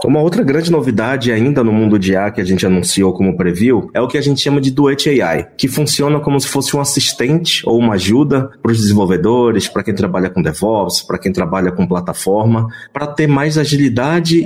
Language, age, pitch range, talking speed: Portuguese, 20-39, 115-160 Hz, 210 wpm